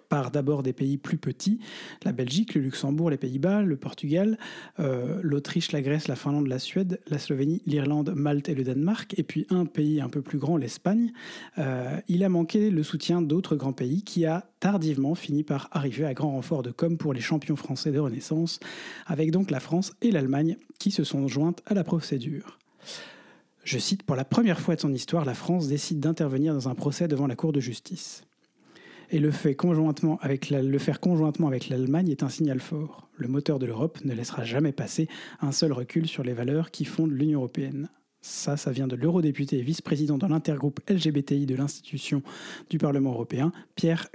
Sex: male